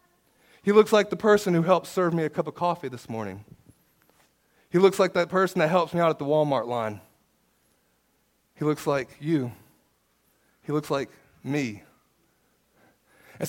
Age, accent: 30-49, American